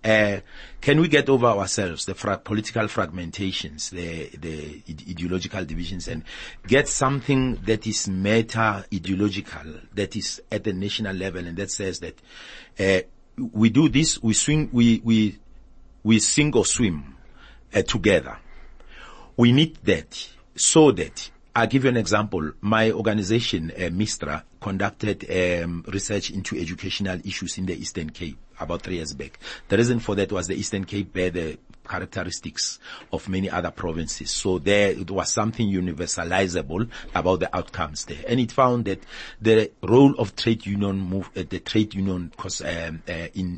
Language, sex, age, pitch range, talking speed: English, male, 40-59, 90-110 Hz, 155 wpm